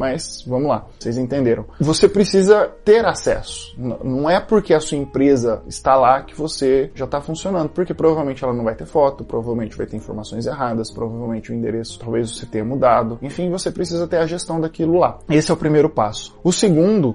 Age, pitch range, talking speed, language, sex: 20-39, 125-165 Hz, 195 wpm, Portuguese, male